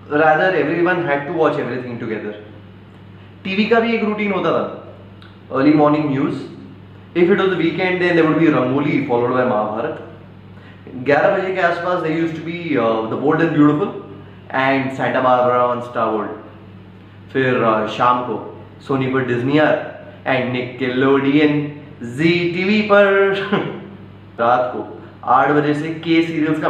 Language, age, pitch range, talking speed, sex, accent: Hindi, 20-39, 110-155 Hz, 160 wpm, male, native